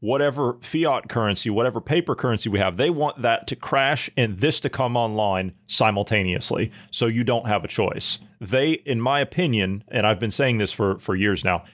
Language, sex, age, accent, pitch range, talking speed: English, male, 40-59, American, 105-135 Hz, 195 wpm